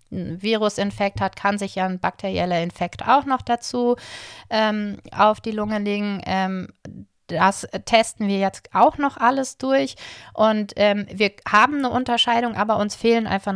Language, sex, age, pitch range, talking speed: German, female, 30-49, 195-230 Hz, 160 wpm